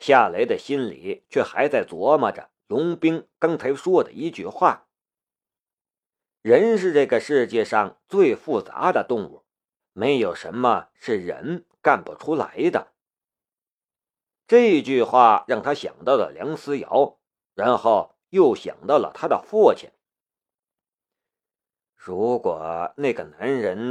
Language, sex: Chinese, male